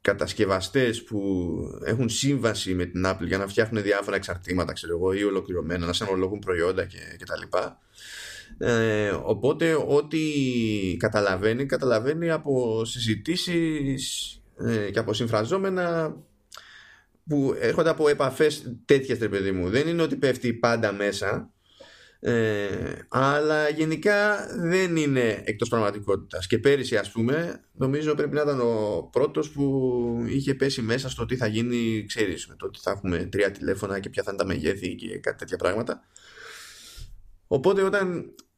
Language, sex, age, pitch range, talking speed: Greek, male, 20-39, 105-145 Hz, 140 wpm